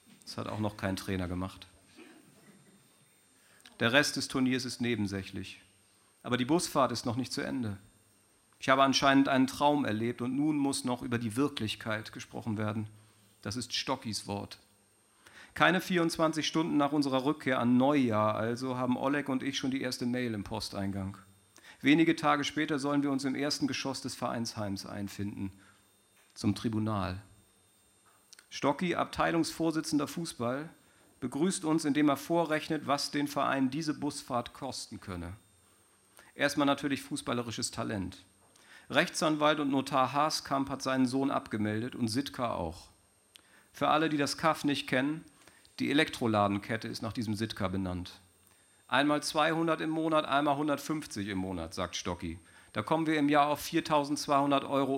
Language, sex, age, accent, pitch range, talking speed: German, male, 40-59, German, 105-145 Hz, 145 wpm